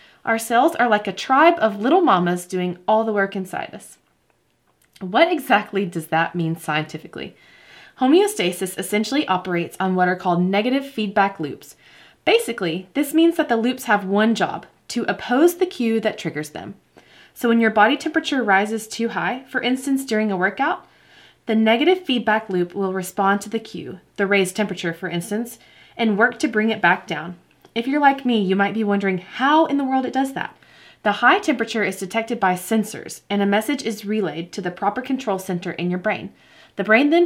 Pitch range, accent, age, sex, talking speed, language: 185-240 Hz, American, 20-39, female, 190 wpm, English